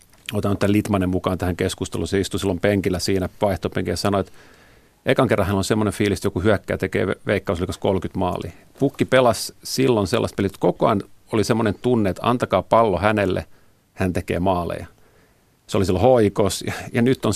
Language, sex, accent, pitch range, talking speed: Finnish, male, native, 95-115 Hz, 190 wpm